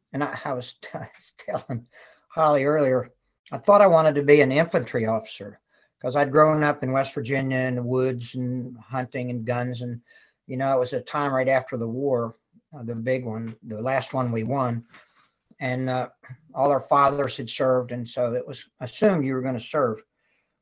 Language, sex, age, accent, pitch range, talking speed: English, male, 50-69, American, 120-145 Hz, 200 wpm